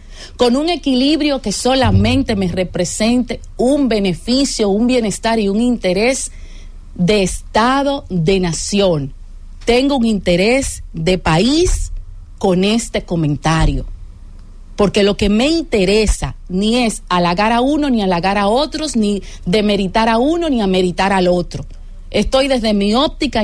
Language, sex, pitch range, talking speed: English, female, 185-255 Hz, 135 wpm